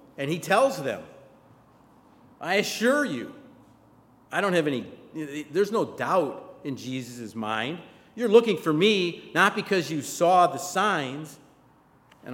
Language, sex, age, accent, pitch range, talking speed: English, male, 50-69, American, 140-185 Hz, 135 wpm